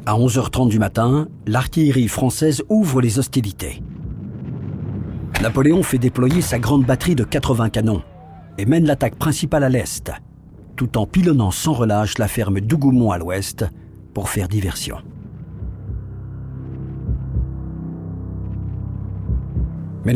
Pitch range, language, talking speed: 105-145 Hz, French, 115 wpm